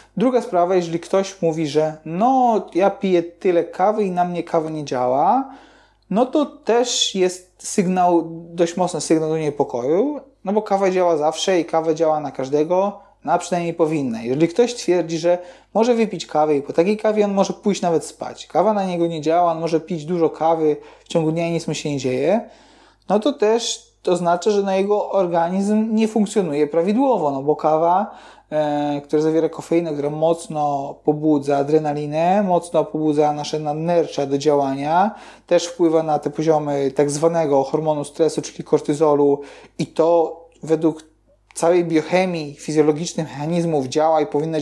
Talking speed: 165 wpm